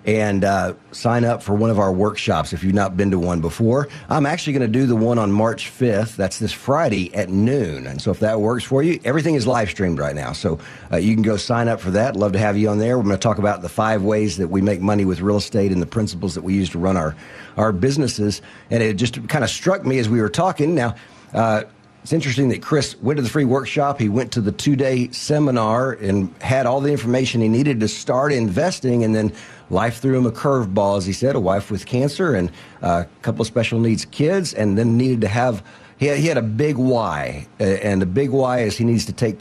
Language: English